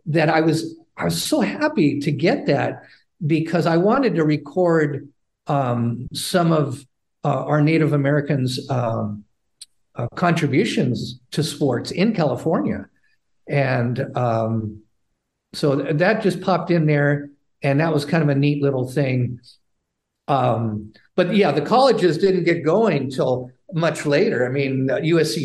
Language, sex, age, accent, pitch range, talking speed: English, male, 50-69, American, 135-175 Hz, 145 wpm